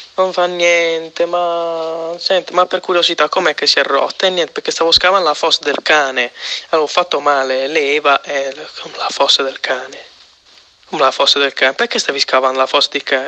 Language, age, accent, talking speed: Italian, 20-39, native, 195 wpm